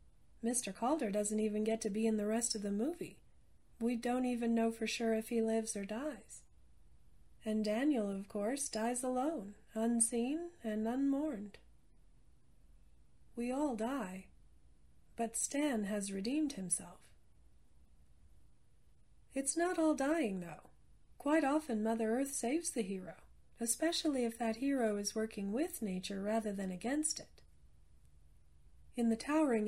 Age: 40-59